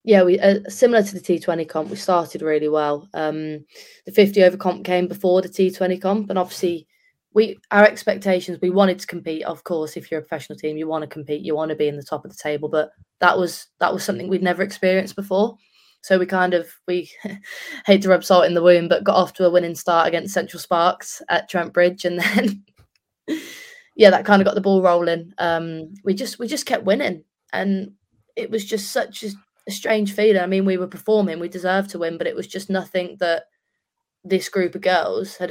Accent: British